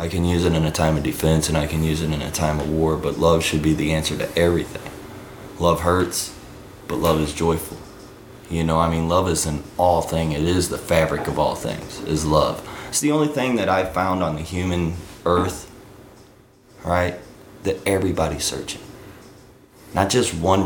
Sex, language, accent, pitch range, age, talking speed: male, English, American, 80-100 Hz, 20-39, 200 wpm